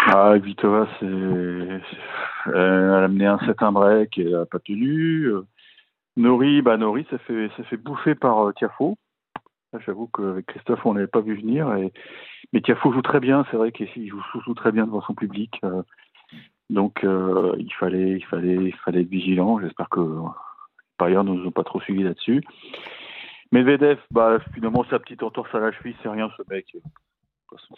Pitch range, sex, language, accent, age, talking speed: 95-130 Hz, male, French, French, 40-59, 185 wpm